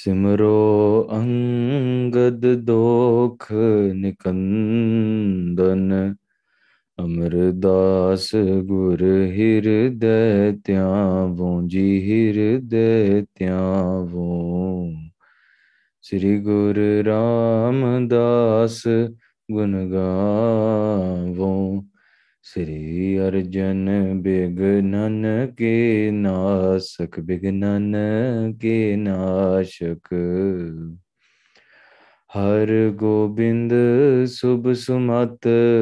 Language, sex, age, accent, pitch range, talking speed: English, male, 20-39, Indian, 95-110 Hz, 45 wpm